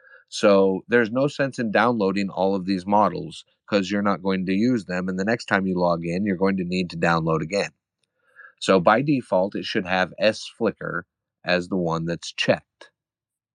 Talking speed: 195 wpm